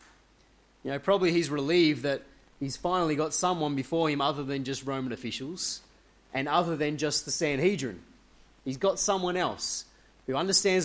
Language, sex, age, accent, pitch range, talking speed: English, male, 20-39, Australian, 135-170 Hz, 160 wpm